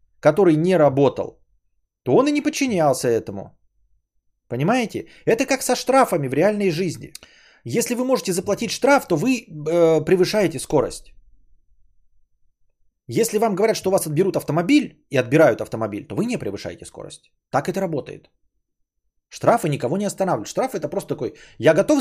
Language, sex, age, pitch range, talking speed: Bulgarian, male, 30-49, 140-220 Hz, 150 wpm